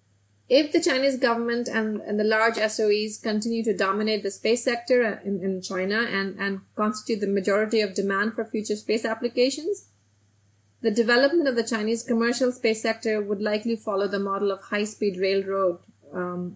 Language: English